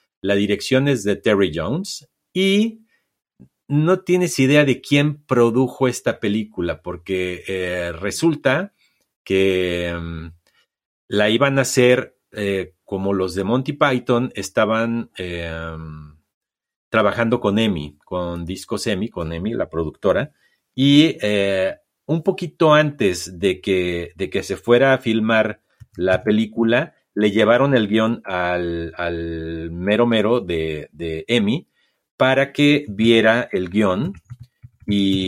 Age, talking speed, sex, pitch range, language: 40-59, 125 wpm, male, 95-130 Hz, English